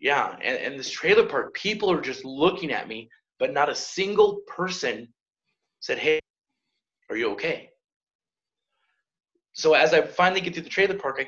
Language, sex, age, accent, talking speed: English, male, 20-39, American, 170 wpm